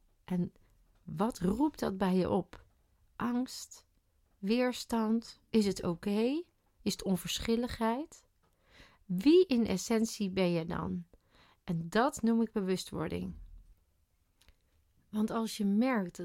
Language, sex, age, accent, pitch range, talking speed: Dutch, female, 40-59, Dutch, 170-220 Hz, 115 wpm